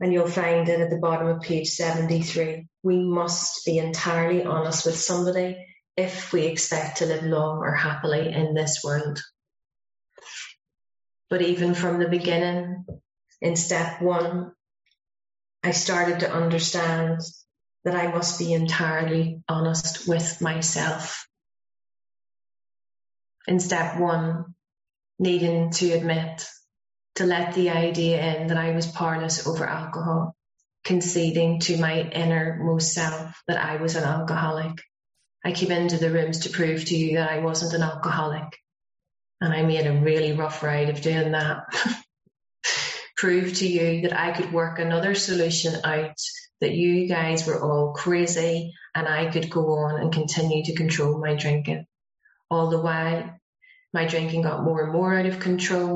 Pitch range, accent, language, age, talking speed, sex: 160-175 Hz, Irish, English, 30-49, 150 wpm, female